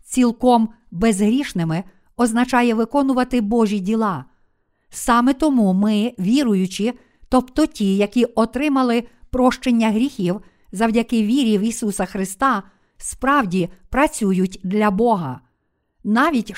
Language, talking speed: Ukrainian, 95 wpm